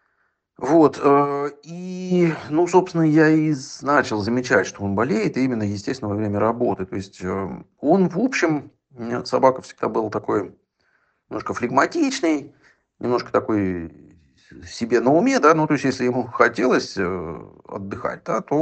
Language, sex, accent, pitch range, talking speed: Russian, male, native, 105-150 Hz, 135 wpm